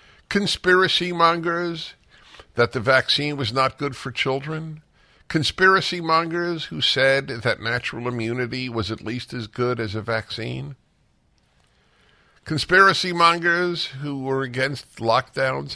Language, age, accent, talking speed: English, 50-69, American, 120 wpm